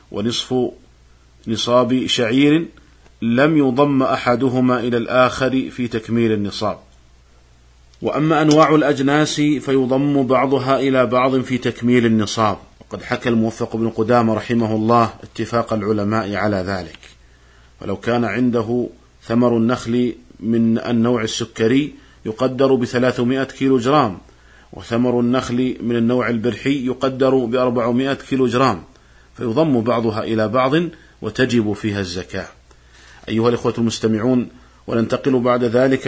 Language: Arabic